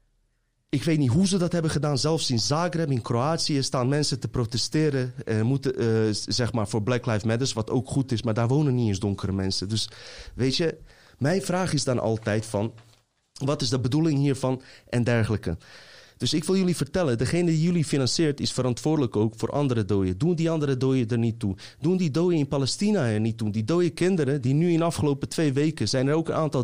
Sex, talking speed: male, 220 wpm